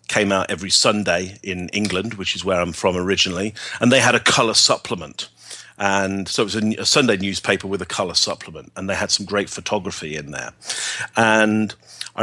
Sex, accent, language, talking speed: male, British, English, 195 wpm